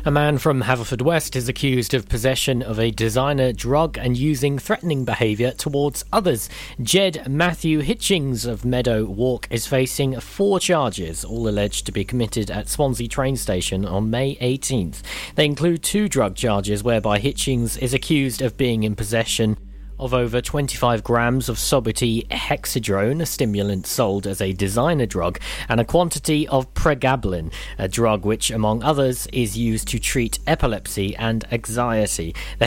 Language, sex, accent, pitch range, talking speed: English, male, British, 105-135 Hz, 160 wpm